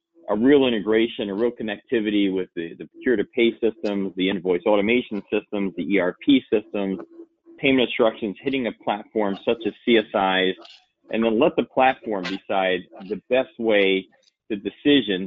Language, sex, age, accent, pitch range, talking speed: English, male, 40-59, American, 95-120 Hz, 155 wpm